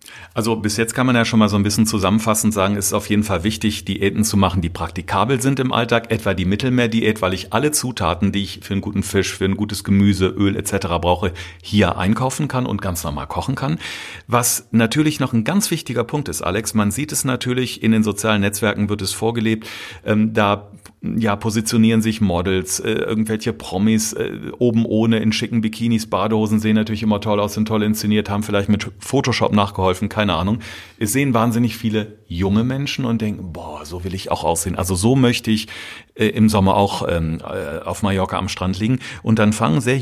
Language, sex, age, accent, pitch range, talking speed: German, male, 40-59, German, 100-115 Hz, 200 wpm